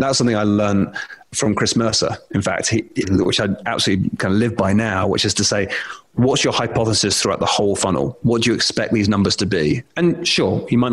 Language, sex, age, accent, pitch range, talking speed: English, male, 30-49, British, 100-120 Hz, 220 wpm